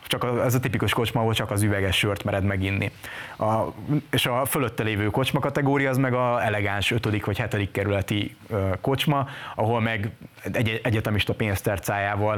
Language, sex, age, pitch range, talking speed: Hungarian, male, 20-39, 100-115 Hz, 170 wpm